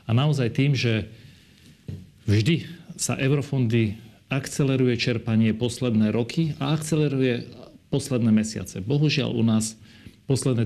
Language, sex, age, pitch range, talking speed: Slovak, male, 40-59, 110-130 Hz, 105 wpm